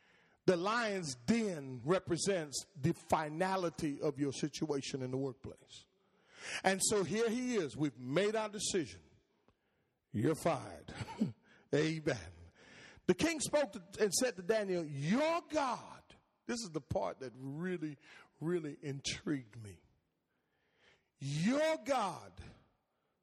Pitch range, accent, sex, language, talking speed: 160-255 Hz, American, male, English, 115 wpm